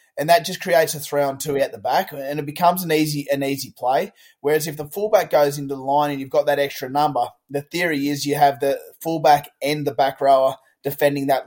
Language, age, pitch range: English, 20-39, 140-155 Hz